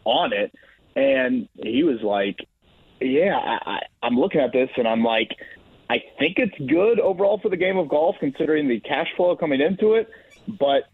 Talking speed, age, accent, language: 185 wpm, 30-49, American, English